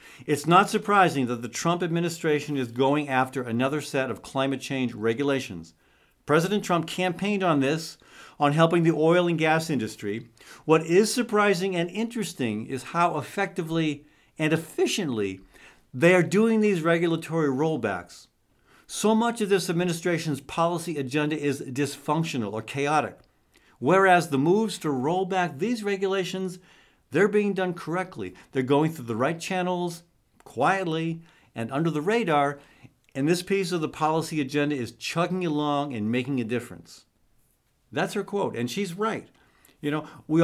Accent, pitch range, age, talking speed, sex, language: American, 135-180 Hz, 50-69, 150 wpm, male, English